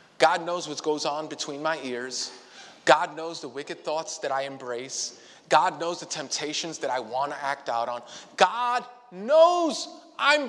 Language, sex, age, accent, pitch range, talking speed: English, male, 30-49, American, 150-210 Hz, 170 wpm